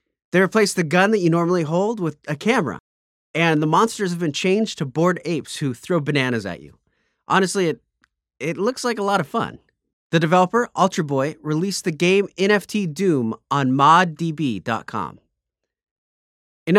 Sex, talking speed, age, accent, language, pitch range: male, 165 wpm, 30-49, American, English, 145-200 Hz